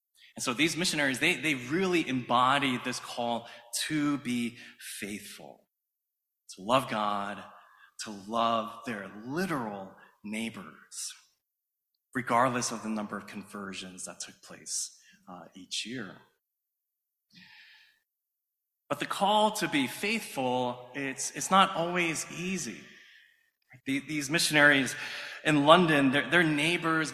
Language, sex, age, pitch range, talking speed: English, male, 20-39, 120-160 Hz, 115 wpm